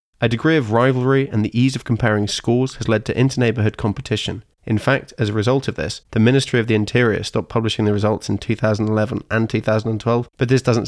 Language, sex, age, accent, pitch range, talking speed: English, male, 20-39, British, 105-125 Hz, 210 wpm